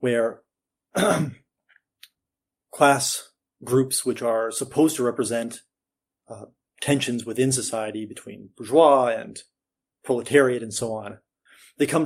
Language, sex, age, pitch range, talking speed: English, male, 30-49, 115-130 Hz, 110 wpm